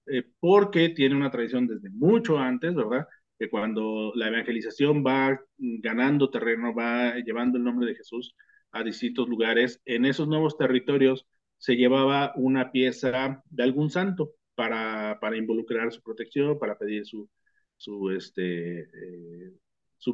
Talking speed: 140 wpm